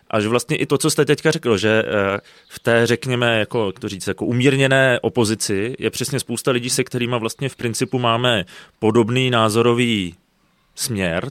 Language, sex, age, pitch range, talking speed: Czech, male, 30-49, 115-135 Hz, 170 wpm